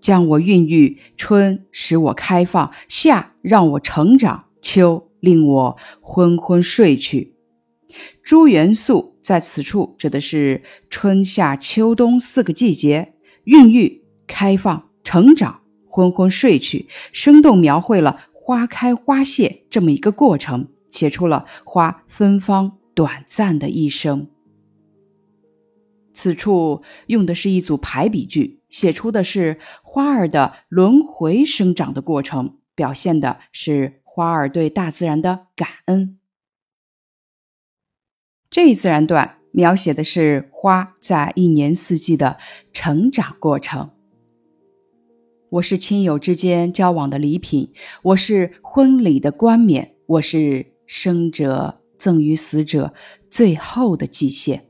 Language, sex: Chinese, female